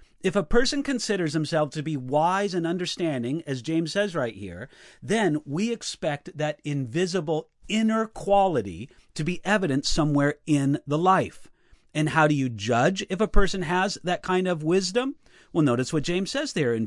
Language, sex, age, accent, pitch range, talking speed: English, male, 40-59, American, 140-195 Hz, 175 wpm